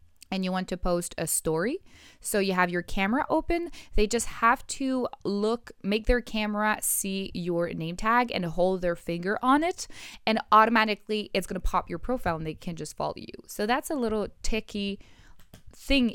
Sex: female